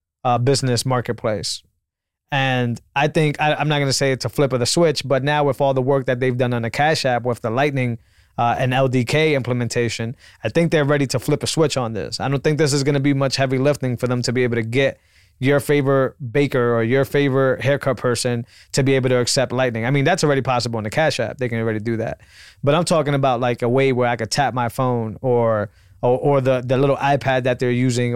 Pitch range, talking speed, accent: 120-135 Hz, 245 wpm, American